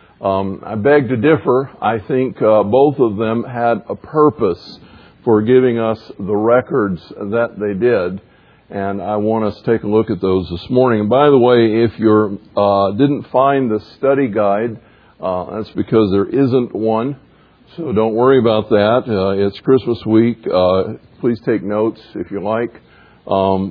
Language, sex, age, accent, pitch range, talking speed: English, male, 50-69, American, 95-125 Hz, 175 wpm